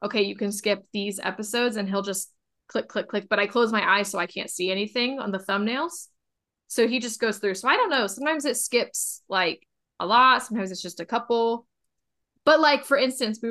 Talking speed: 220 wpm